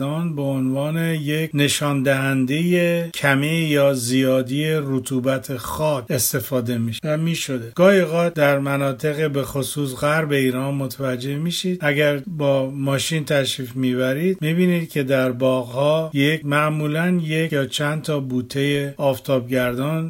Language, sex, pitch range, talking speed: Persian, male, 130-155 Hz, 120 wpm